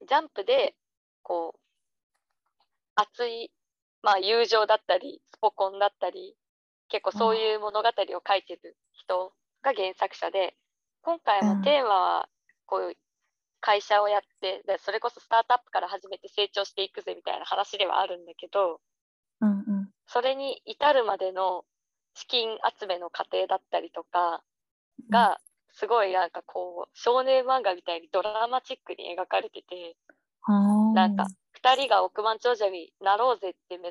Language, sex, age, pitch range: Japanese, female, 20-39, 185-230 Hz